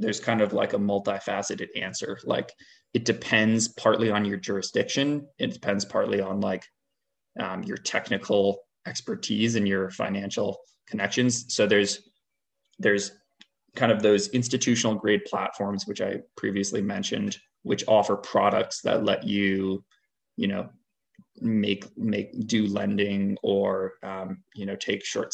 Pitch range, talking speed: 100-115 Hz, 135 wpm